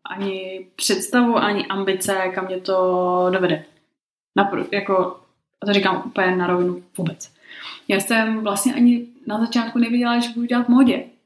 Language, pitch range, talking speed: Slovak, 195-245 Hz, 150 wpm